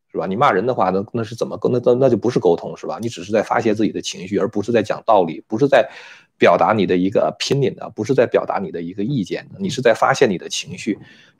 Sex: male